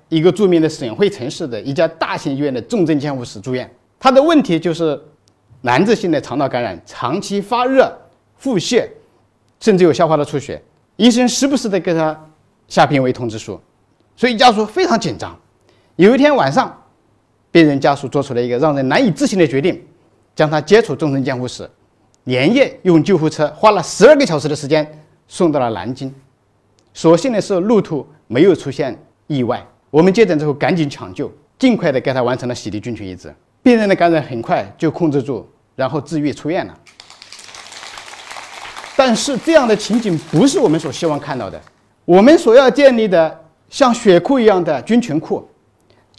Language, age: Chinese, 50-69